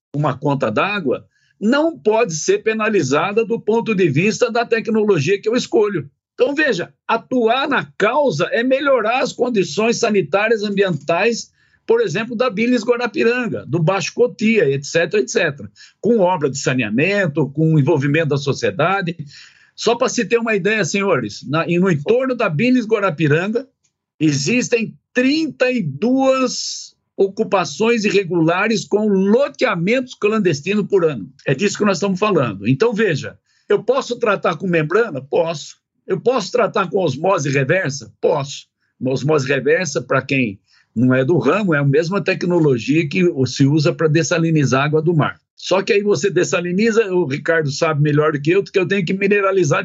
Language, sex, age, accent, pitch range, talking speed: Portuguese, male, 60-79, Brazilian, 155-230 Hz, 150 wpm